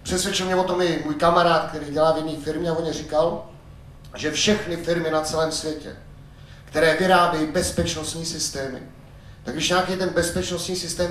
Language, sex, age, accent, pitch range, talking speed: Czech, male, 30-49, native, 155-200 Hz, 175 wpm